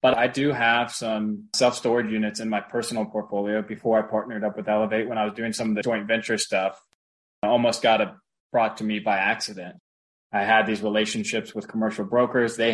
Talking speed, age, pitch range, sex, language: 205 wpm, 20-39, 105-120 Hz, male, English